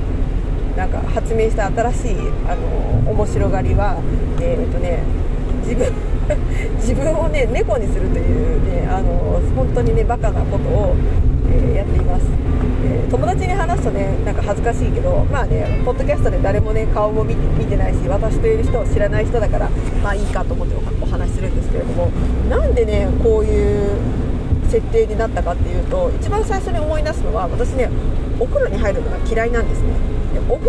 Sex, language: female, Japanese